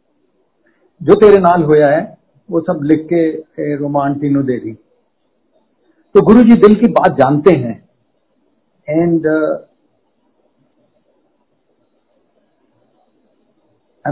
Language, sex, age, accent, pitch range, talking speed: Hindi, male, 50-69, native, 155-200 Hz, 90 wpm